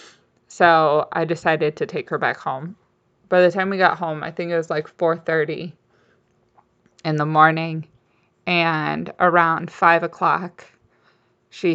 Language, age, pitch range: English, 20-39, 155-180 Hz